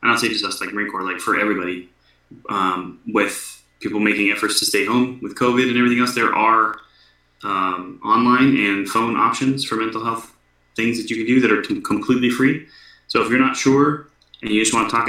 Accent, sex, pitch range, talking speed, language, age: American, male, 90-115 Hz, 215 wpm, English, 20-39